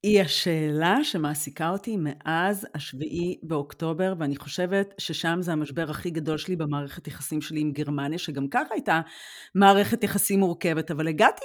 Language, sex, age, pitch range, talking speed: Hebrew, female, 40-59, 160-230 Hz, 145 wpm